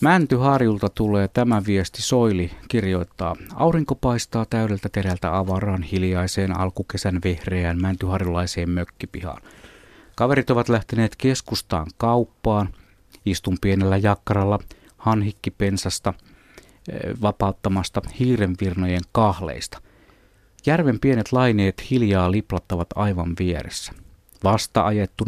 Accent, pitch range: native, 95-115 Hz